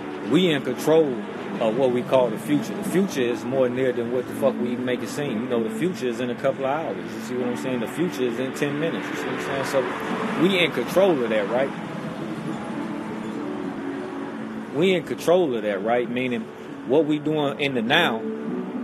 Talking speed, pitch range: 220 wpm, 125-155 Hz